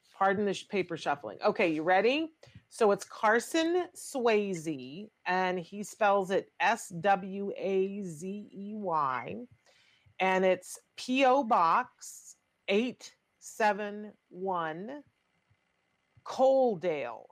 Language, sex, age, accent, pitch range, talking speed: English, female, 40-59, American, 170-210 Hz, 85 wpm